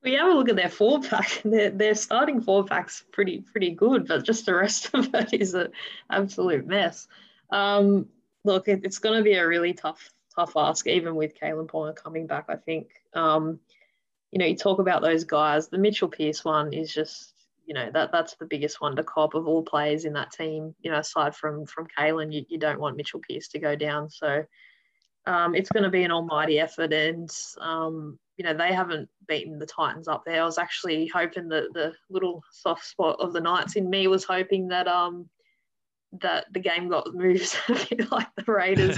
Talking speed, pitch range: 205 wpm, 155-195 Hz